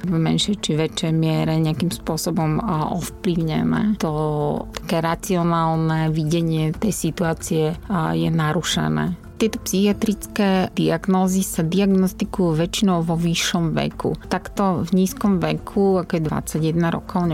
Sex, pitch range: female, 160-185 Hz